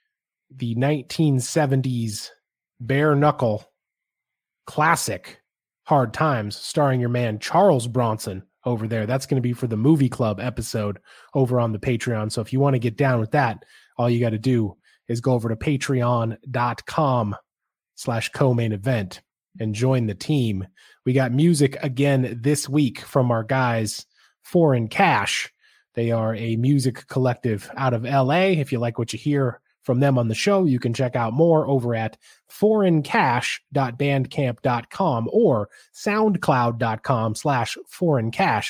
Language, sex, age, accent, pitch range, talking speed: English, male, 20-39, American, 120-150 Hz, 145 wpm